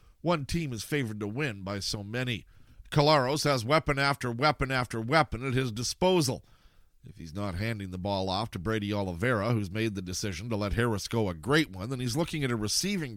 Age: 40-59